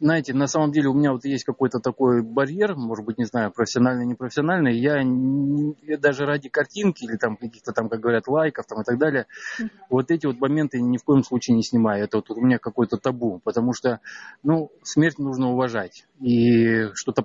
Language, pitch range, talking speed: Russian, 115-145 Hz, 205 wpm